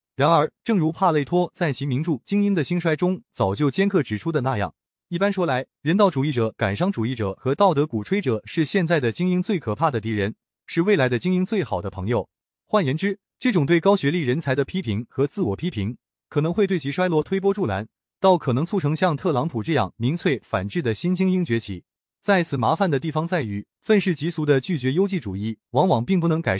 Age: 20-39